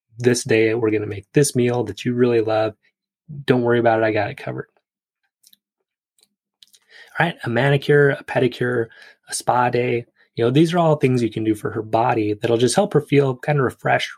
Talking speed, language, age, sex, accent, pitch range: 205 wpm, English, 20-39, male, American, 115-140 Hz